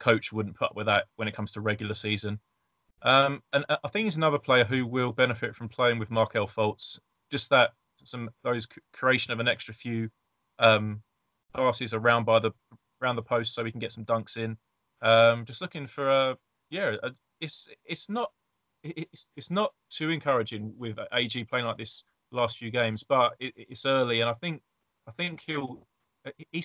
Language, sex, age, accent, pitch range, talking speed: English, male, 20-39, British, 115-140 Hz, 195 wpm